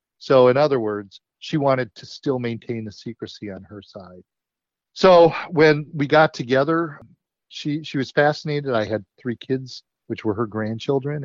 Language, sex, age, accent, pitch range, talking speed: English, male, 40-59, American, 110-135 Hz, 165 wpm